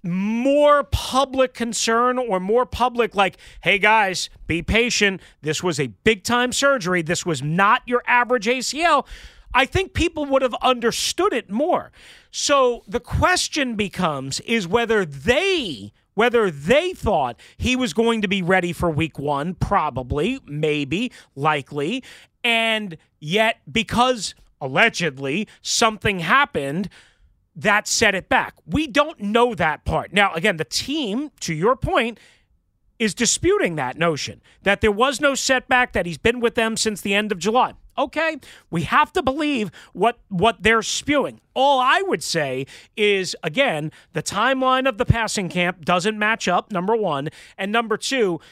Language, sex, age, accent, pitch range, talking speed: English, male, 40-59, American, 175-255 Hz, 150 wpm